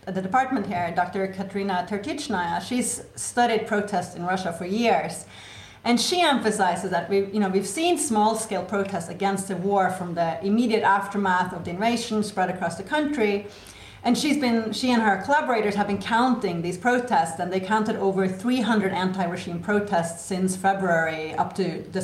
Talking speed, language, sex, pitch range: 175 wpm, English, female, 180-220 Hz